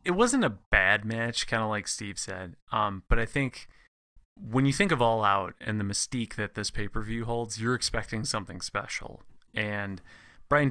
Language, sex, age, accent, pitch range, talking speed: English, male, 30-49, American, 105-125 Hz, 195 wpm